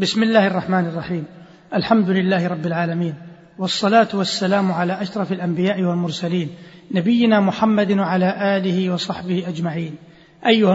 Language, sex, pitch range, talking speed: Arabic, male, 185-215 Hz, 115 wpm